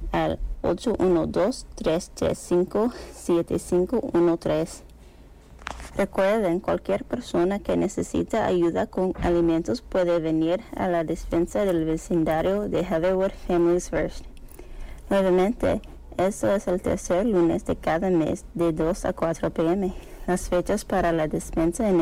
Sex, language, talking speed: female, English, 110 wpm